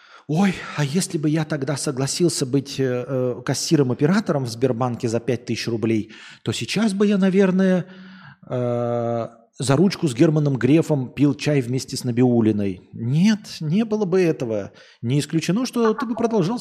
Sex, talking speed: male, 150 wpm